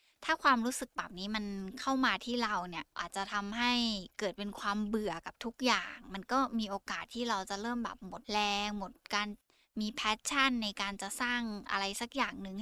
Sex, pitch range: female, 200-245 Hz